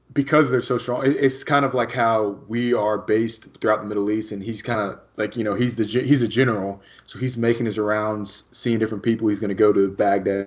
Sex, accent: male, American